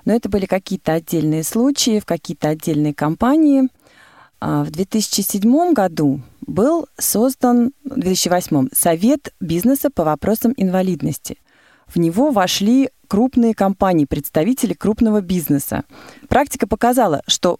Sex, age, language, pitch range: female, 30-49, Russian, 175-235 Hz